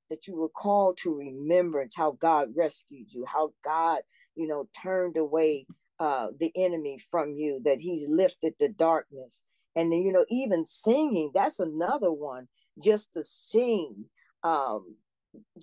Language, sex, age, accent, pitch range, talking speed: English, female, 50-69, American, 150-195 Hz, 150 wpm